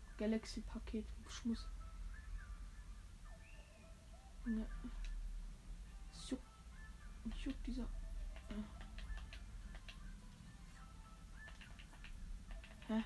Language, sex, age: German, female, 20-39